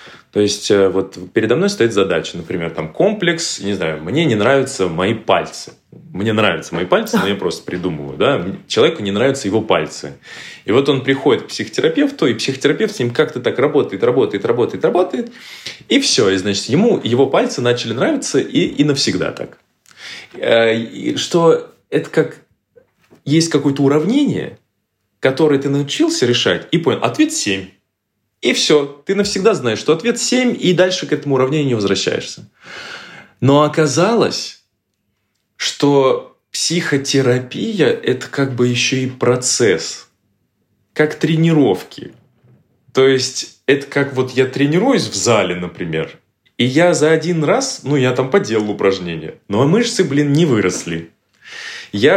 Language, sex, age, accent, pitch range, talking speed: Russian, male, 20-39, native, 110-165 Hz, 150 wpm